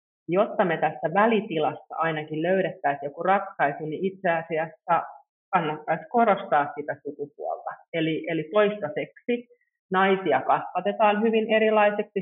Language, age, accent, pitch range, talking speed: Finnish, 30-49, native, 155-200 Hz, 110 wpm